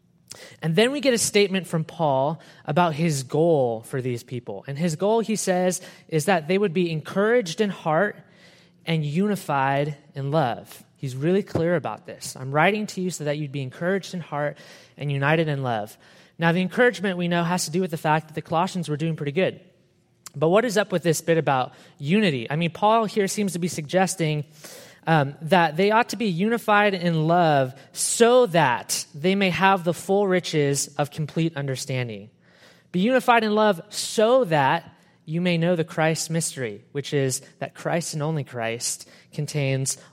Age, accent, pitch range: 20-39, American, 145-185 Hz